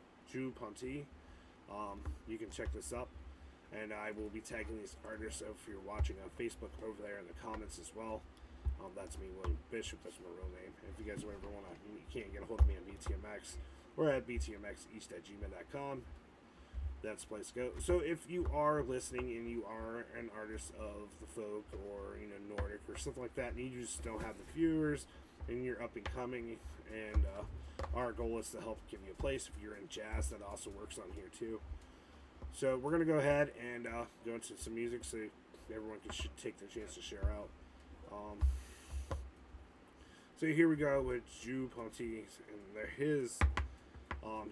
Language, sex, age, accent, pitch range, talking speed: English, male, 30-49, American, 75-120 Hz, 200 wpm